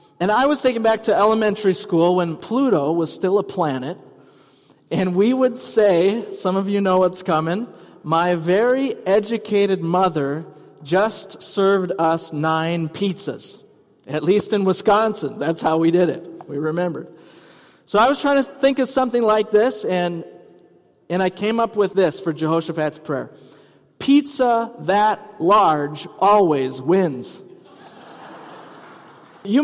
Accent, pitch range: American, 165-210 Hz